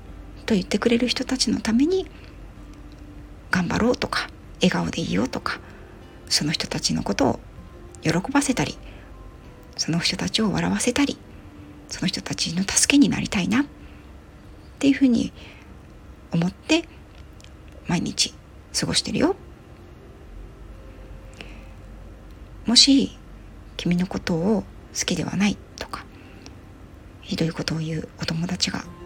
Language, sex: Japanese, female